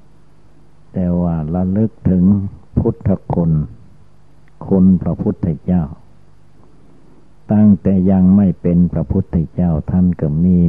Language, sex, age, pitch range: Thai, male, 60-79, 80-95 Hz